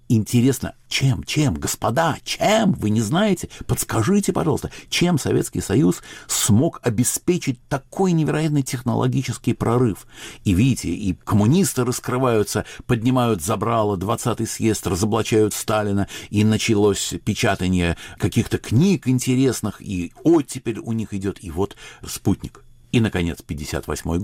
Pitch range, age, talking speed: 95-130 Hz, 50-69, 120 wpm